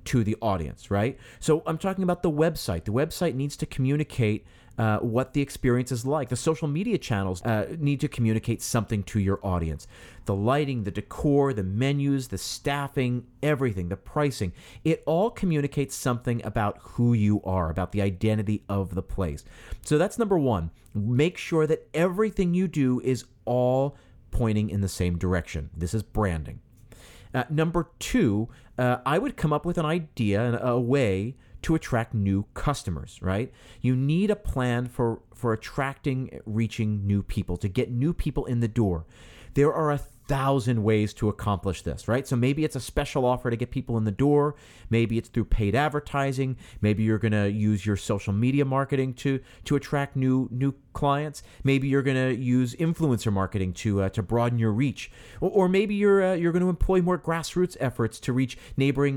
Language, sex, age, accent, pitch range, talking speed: English, male, 40-59, American, 105-140 Hz, 185 wpm